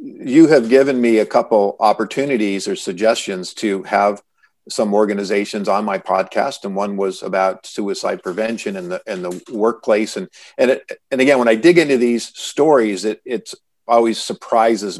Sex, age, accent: male, 50-69, American